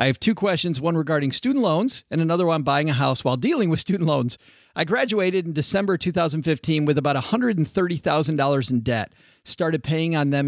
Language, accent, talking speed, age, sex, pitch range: English, American, 185 wpm, 40-59, male, 135-170 Hz